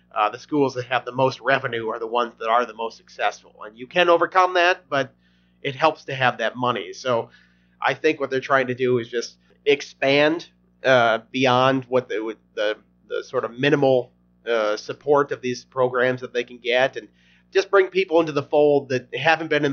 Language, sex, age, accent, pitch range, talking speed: English, male, 40-59, American, 110-140 Hz, 205 wpm